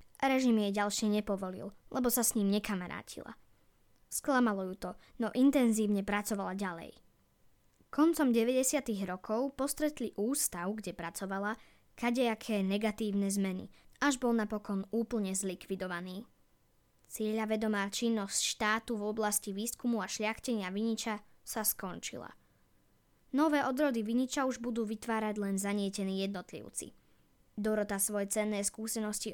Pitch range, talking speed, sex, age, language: 200-235 Hz, 115 wpm, female, 20-39, Slovak